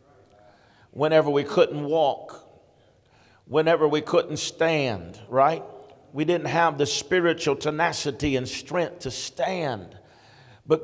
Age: 50-69